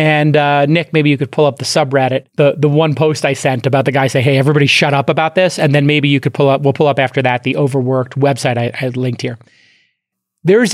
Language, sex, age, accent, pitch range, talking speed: English, male, 30-49, American, 140-185 Hz, 255 wpm